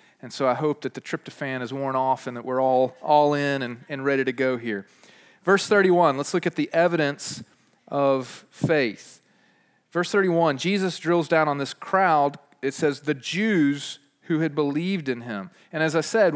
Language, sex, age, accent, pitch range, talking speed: English, male, 40-59, American, 145-200 Hz, 190 wpm